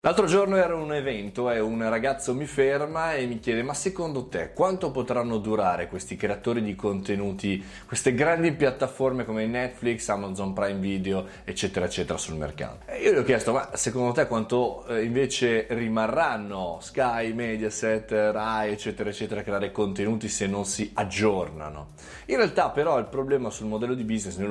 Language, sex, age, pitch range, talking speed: Italian, male, 20-39, 100-130 Hz, 165 wpm